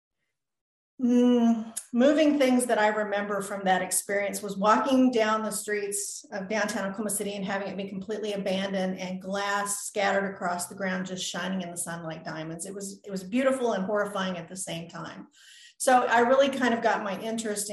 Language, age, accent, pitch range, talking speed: English, 40-59, American, 190-215 Hz, 190 wpm